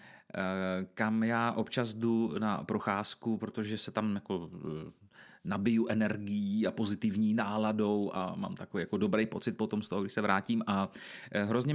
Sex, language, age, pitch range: male, Czech, 30-49, 100-130 Hz